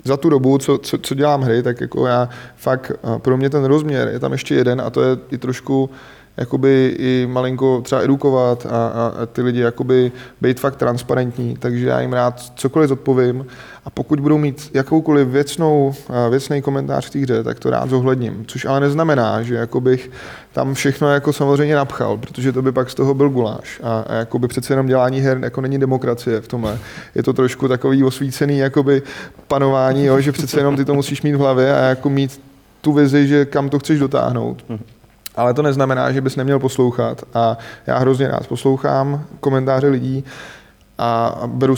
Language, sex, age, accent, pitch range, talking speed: Czech, male, 20-39, native, 120-140 Hz, 190 wpm